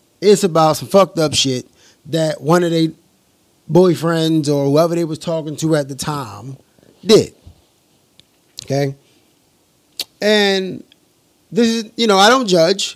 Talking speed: 140 wpm